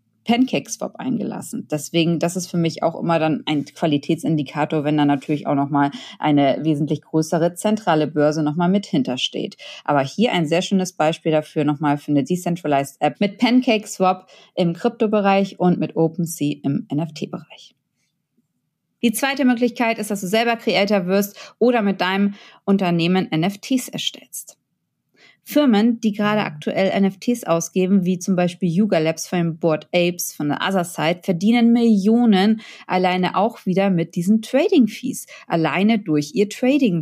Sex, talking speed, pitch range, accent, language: female, 150 wpm, 175-225 Hz, German, German